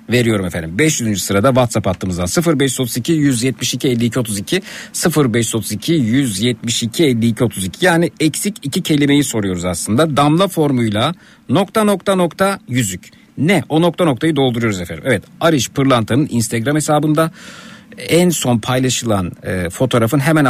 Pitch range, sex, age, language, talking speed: 110-150 Hz, male, 50-69, Turkish, 125 wpm